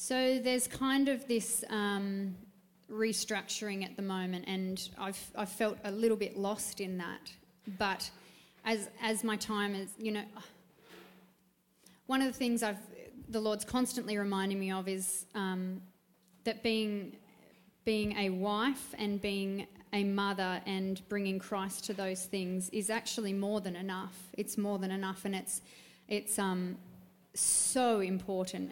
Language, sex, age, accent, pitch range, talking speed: English, female, 20-39, Australian, 185-210 Hz, 150 wpm